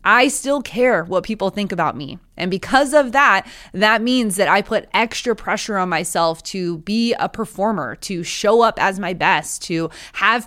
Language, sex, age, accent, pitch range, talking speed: English, female, 20-39, American, 175-225 Hz, 190 wpm